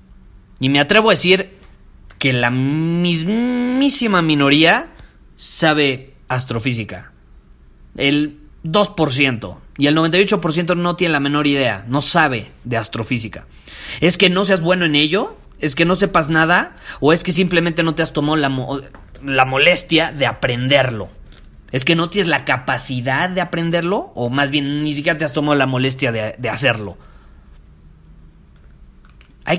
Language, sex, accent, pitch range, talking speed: Spanish, male, Mexican, 115-160 Hz, 145 wpm